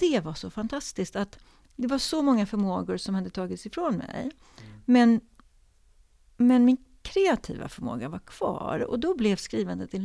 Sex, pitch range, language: female, 200-260 Hz, Swedish